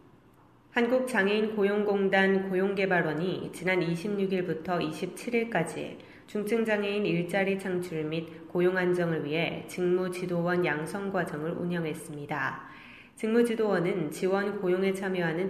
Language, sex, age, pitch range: Korean, female, 20-39, 165-200 Hz